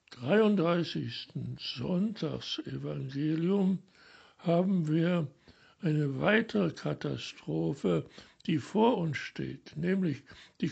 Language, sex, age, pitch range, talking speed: German, male, 60-79, 155-195 Hz, 75 wpm